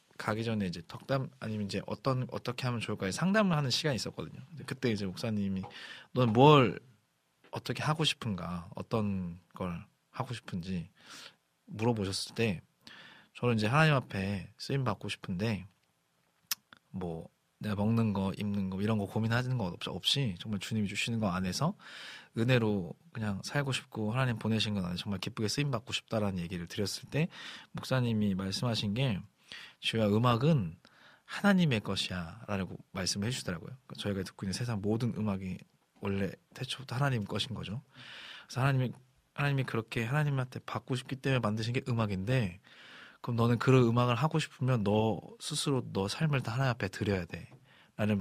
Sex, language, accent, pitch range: male, Korean, native, 100-135 Hz